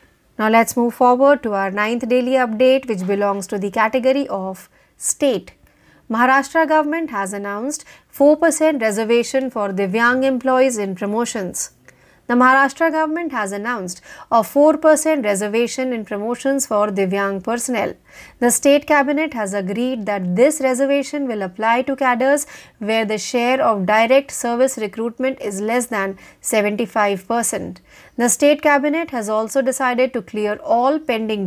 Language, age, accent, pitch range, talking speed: Marathi, 30-49, native, 210-280 Hz, 140 wpm